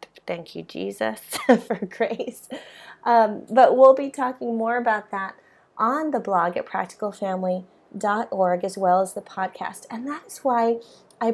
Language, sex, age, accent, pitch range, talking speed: English, female, 30-49, American, 195-255 Hz, 145 wpm